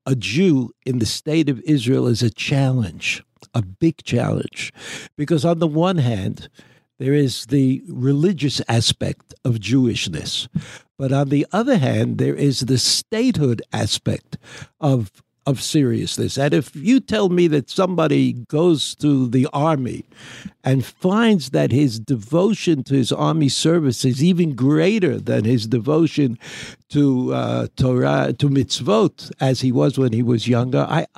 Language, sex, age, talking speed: English, male, 60-79, 150 wpm